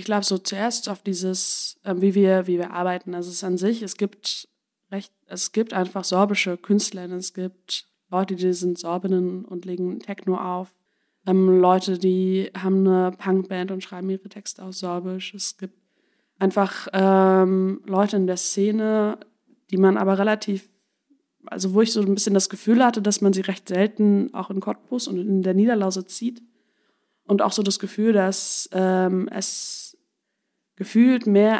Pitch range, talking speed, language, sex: 185-205 Hz, 175 wpm, German, female